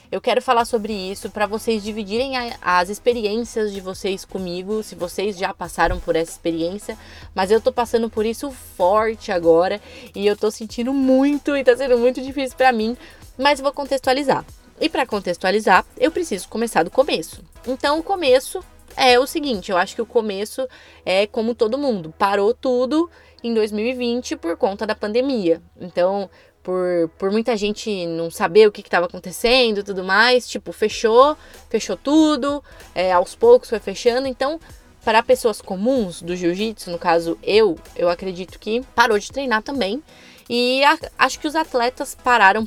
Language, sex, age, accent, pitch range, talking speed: Portuguese, female, 20-39, Brazilian, 190-260 Hz, 170 wpm